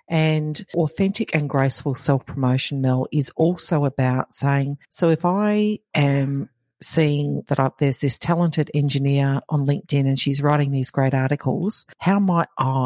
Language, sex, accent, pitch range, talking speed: English, female, Australian, 130-155 Hz, 140 wpm